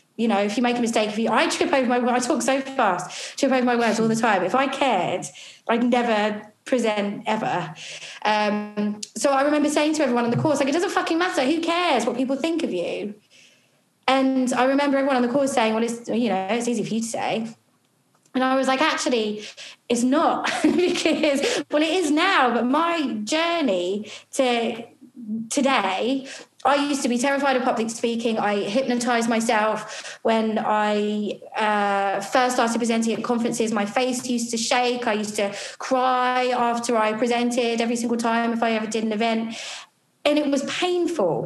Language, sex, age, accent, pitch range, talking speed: English, female, 20-39, British, 225-275 Hz, 190 wpm